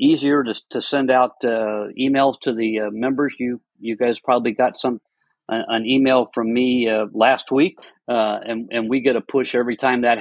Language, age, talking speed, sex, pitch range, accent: English, 50-69, 205 wpm, male, 110-130 Hz, American